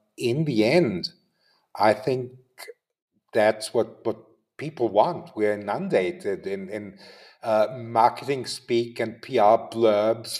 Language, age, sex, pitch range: English, 50-69, male, 115-135 Hz